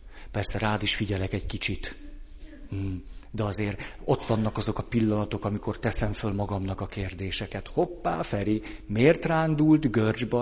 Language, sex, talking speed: Hungarian, male, 140 wpm